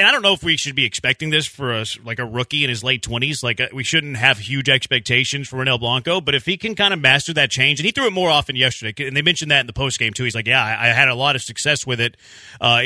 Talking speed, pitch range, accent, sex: 300 wpm, 125-155 Hz, American, male